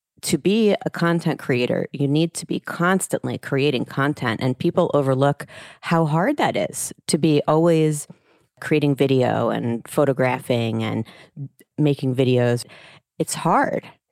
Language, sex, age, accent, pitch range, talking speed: English, female, 30-49, American, 135-160 Hz, 130 wpm